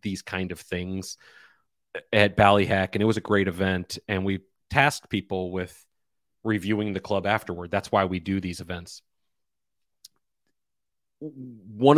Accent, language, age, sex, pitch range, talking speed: American, English, 30-49, male, 95-110 Hz, 140 wpm